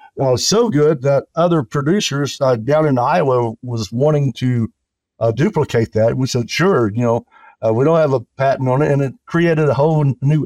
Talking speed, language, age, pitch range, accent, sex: 220 wpm, English, 60-79, 120-145 Hz, American, male